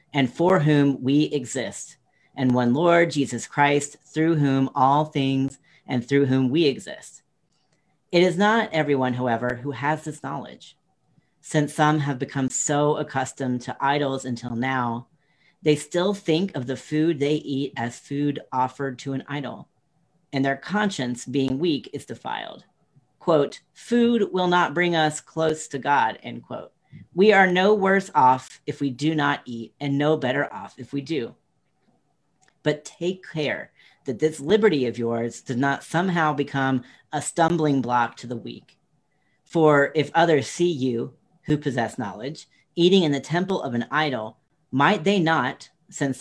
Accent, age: American, 40-59